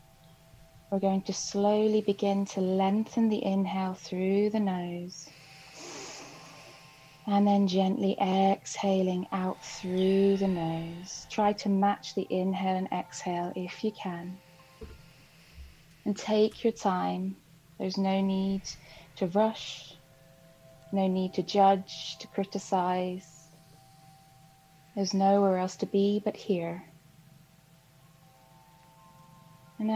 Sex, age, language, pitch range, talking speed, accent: female, 20-39, English, 160-200 Hz, 105 wpm, British